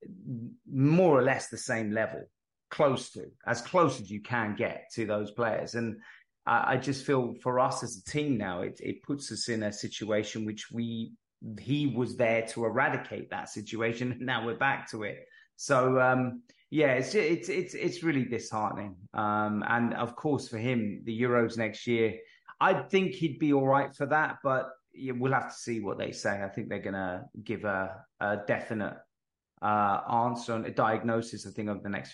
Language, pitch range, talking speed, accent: English, 115-145 Hz, 195 wpm, British